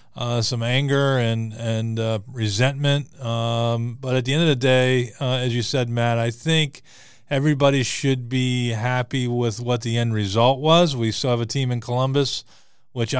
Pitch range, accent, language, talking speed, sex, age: 115-130 Hz, American, English, 180 wpm, male, 40-59